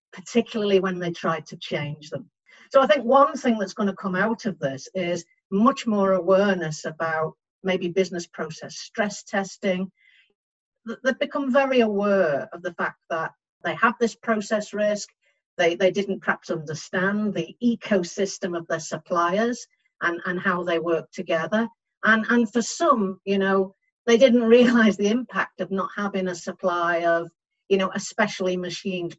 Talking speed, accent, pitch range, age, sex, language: 160 wpm, British, 175-225 Hz, 50-69, female, English